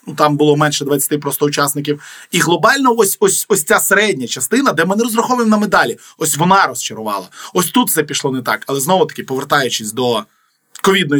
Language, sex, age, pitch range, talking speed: Ukrainian, male, 20-39, 145-190 Hz, 190 wpm